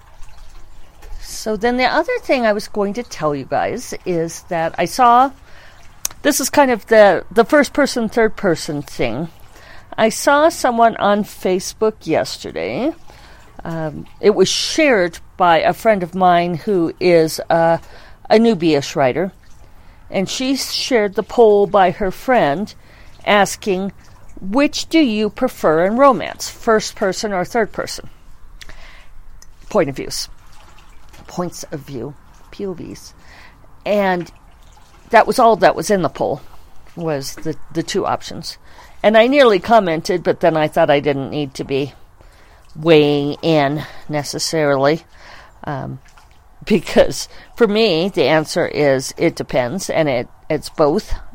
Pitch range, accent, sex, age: 150-220 Hz, American, female, 50-69